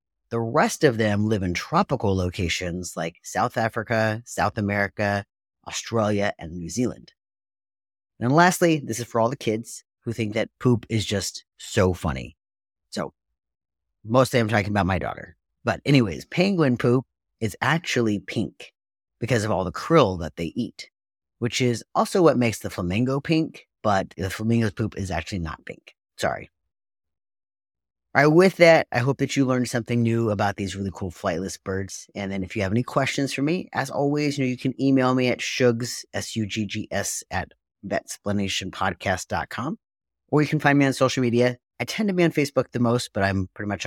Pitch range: 95-130 Hz